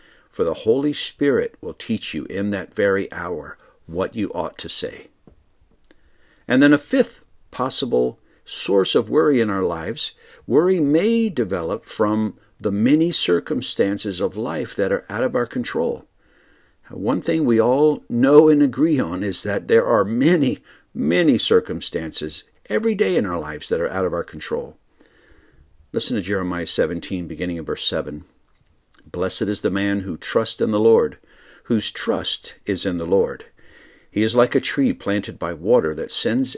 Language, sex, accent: English, male, American